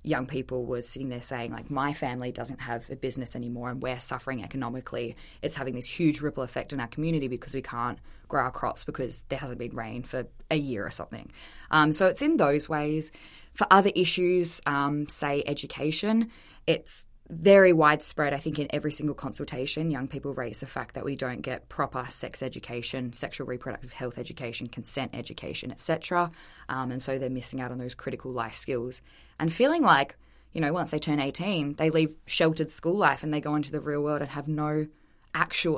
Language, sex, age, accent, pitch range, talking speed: English, female, 20-39, Australian, 130-155 Hz, 200 wpm